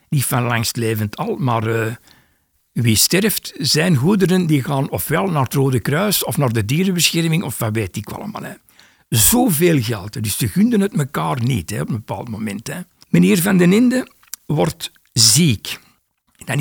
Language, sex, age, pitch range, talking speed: Dutch, male, 60-79, 115-155 Hz, 175 wpm